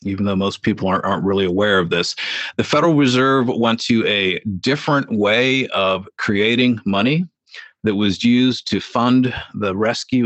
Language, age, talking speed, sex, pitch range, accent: English, 50-69, 165 wpm, male, 105-130 Hz, American